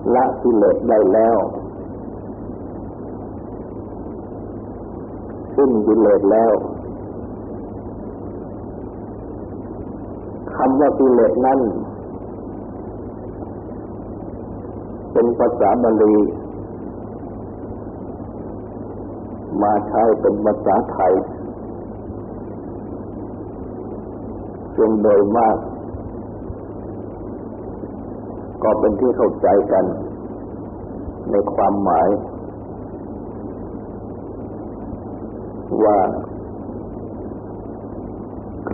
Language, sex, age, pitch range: Thai, male, 50-69, 95-115 Hz